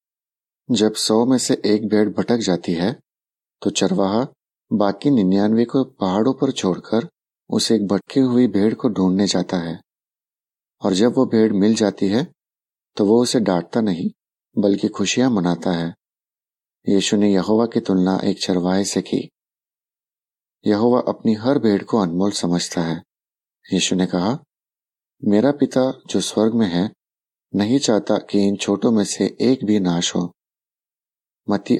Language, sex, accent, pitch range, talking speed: Hindi, male, native, 95-115 Hz, 150 wpm